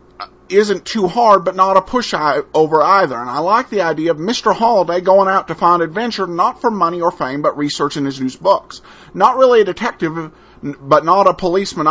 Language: English